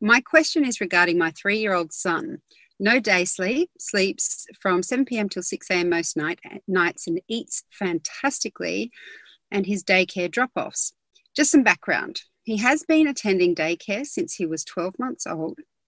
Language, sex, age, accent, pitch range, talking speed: English, female, 40-59, Australian, 175-245 Hz, 165 wpm